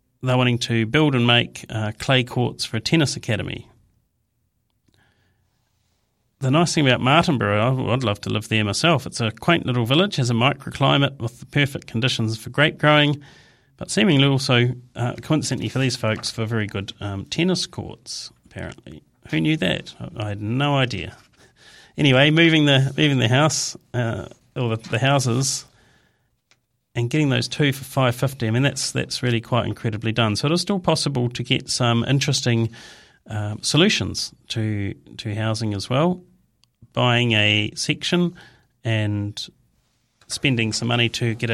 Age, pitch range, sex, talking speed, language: 40-59, 110-140 Hz, male, 155 wpm, English